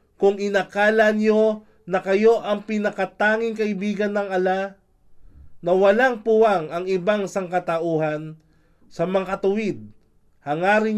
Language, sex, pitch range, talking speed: Filipino, male, 145-210 Hz, 105 wpm